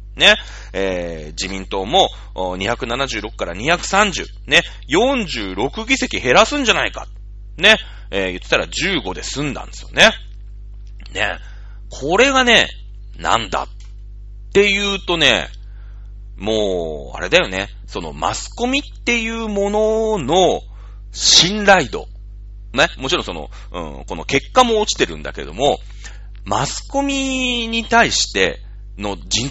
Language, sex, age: Japanese, male, 40-59